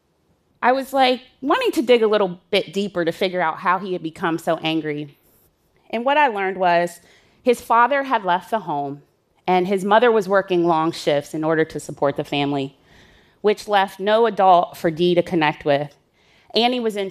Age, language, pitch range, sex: 30-49, Korean, 170-225 Hz, female